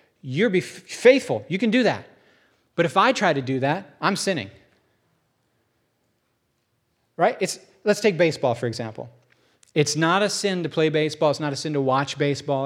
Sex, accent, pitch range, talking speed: male, American, 140-205 Hz, 165 wpm